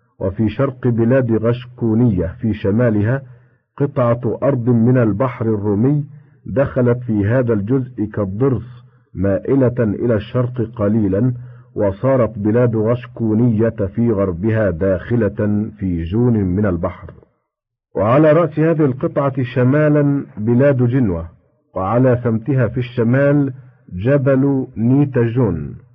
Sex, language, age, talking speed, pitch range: male, Arabic, 50-69, 100 wpm, 110-130 Hz